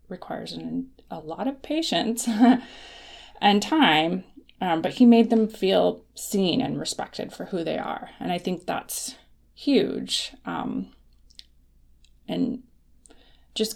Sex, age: female, 20-39